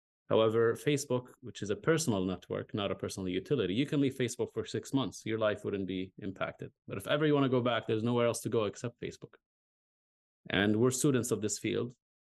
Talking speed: 215 wpm